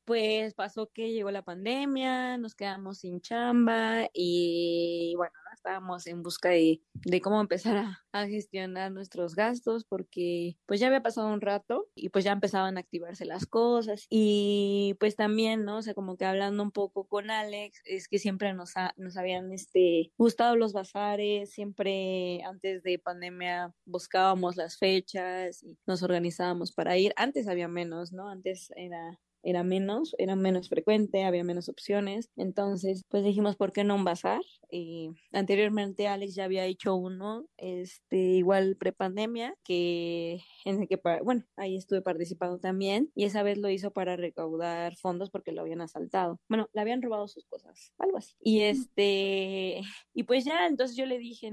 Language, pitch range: Spanish, 180-215 Hz